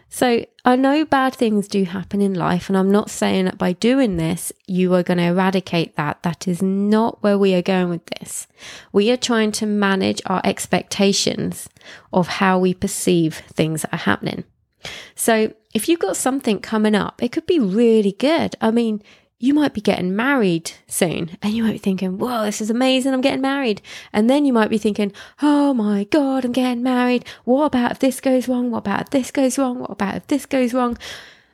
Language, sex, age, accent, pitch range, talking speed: English, female, 20-39, British, 200-260 Hz, 205 wpm